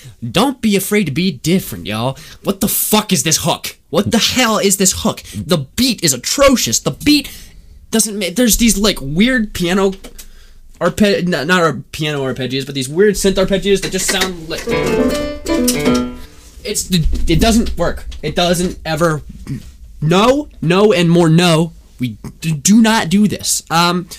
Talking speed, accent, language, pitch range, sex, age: 165 wpm, American, English, 115-185 Hz, male, 20-39